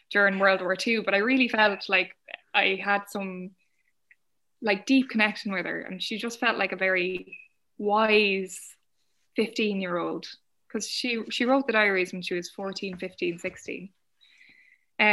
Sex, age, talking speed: female, 10-29, 160 wpm